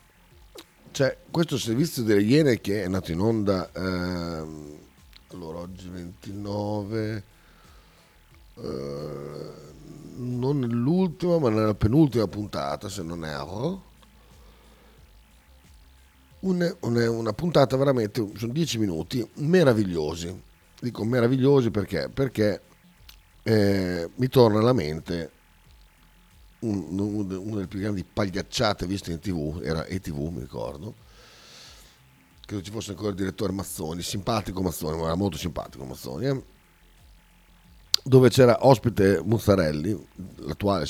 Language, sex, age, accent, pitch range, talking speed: Italian, male, 50-69, native, 85-115 Hz, 110 wpm